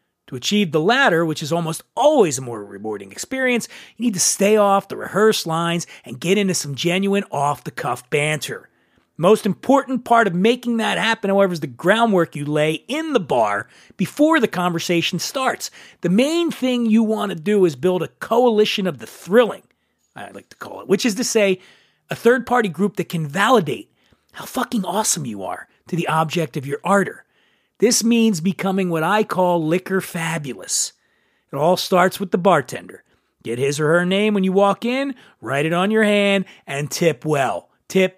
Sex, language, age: male, English, 40-59